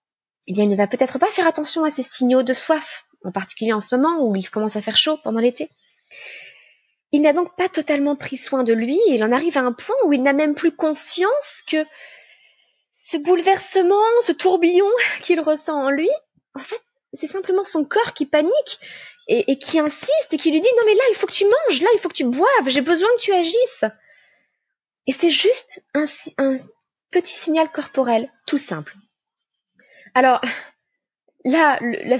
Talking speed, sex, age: 190 wpm, female, 20-39